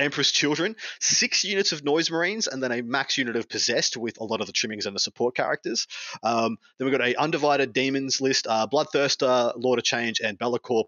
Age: 20-39